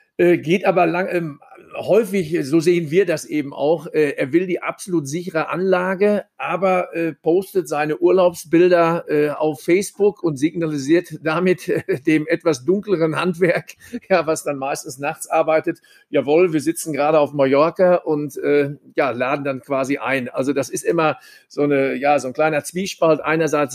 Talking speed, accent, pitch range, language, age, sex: 165 wpm, German, 145-180 Hz, German, 50-69, male